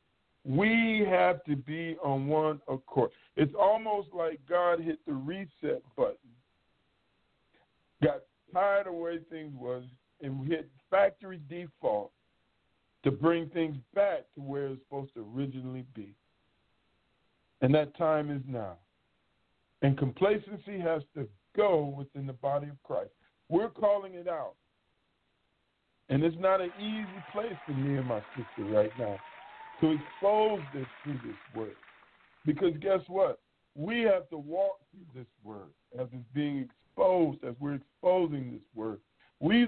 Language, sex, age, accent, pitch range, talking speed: English, male, 50-69, American, 130-180 Hz, 145 wpm